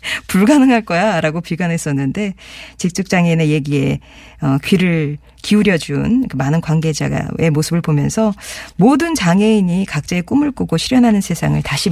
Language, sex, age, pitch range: Korean, female, 40-59, 150-215 Hz